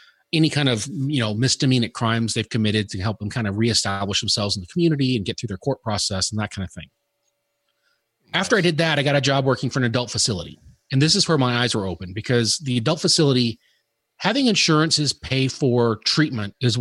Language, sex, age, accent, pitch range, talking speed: English, male, 30-49, American, 115-150 Hz, 220 wpm